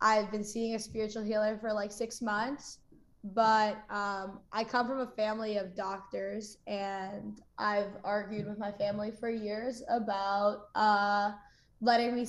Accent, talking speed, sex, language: American, 150 wpm, female, English